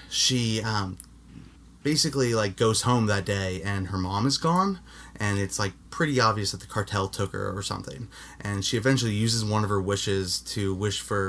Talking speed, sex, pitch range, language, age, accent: 190 wpm, male, 100-135 Hz, English, 20-39, American